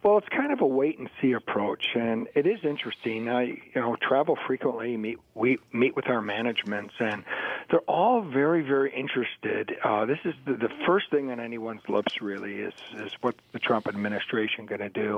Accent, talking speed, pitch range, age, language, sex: American, 200 wpm, 115-145 Hz, 50-69, English, male